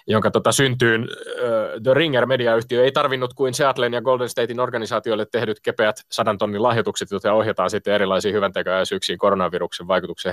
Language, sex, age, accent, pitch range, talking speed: Finnish, male, 20-39, native, 105-130 Hz, 145 wpm